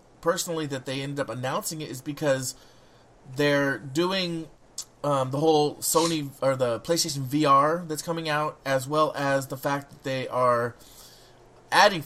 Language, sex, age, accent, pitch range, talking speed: English, male, 30-49, American, 125-155 Hz, 155 wpm